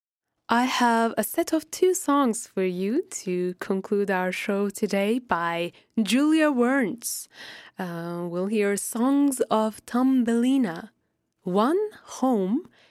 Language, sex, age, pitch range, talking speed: English, female, 20-39, 190-245 Hz, 120 wpm